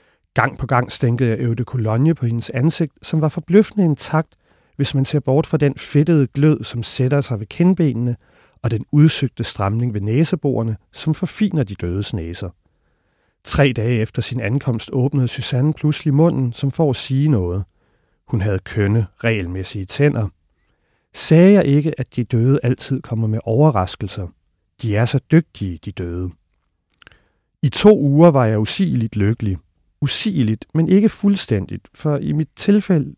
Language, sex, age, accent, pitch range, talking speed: Danish, male, 40-59, native, 110-150 Hz, 160 wpm